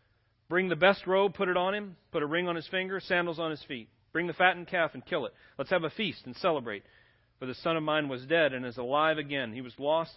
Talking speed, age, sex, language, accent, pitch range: 265 wpm, 40-59, male, English, American, 110-150 Hz